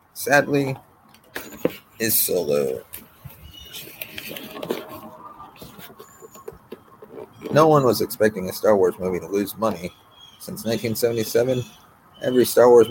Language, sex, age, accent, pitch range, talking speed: English, male, 30-49, American, 105-125 Hz, 95 wpm